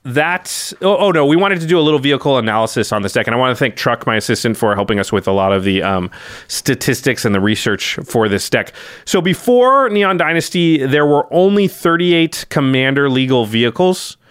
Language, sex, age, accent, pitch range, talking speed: English, male, 30-49, American, 115-160 Hz, 205 wpm